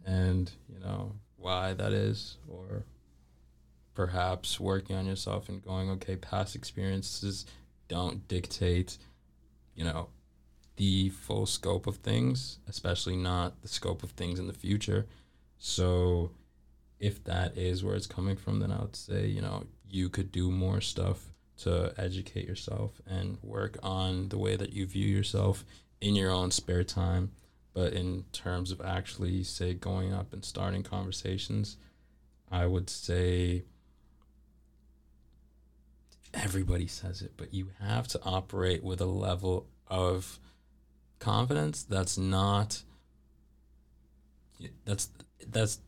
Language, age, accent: English, 20-39, American